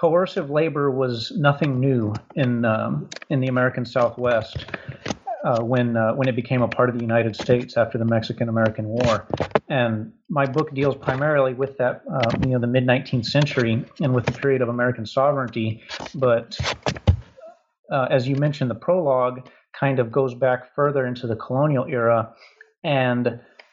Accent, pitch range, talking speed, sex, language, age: American, 120-140 Hz, 165 wpm, male, English, 40-59